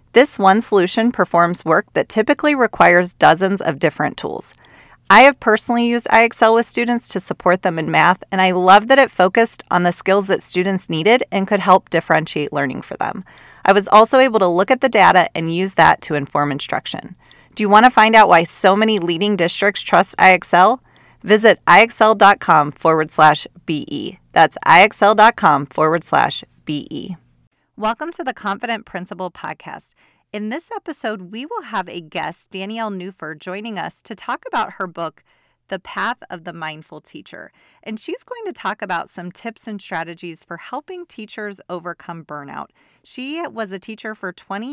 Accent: American